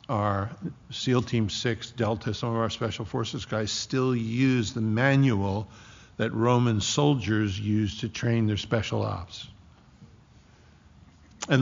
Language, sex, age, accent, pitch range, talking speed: English, male, 60-79, American, 110-135 Hz, 130 wpm